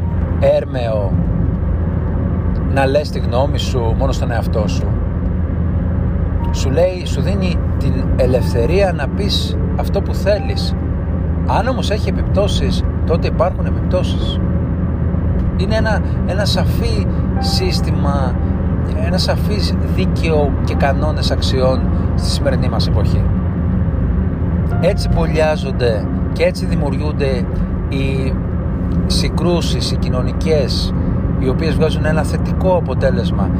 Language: Greek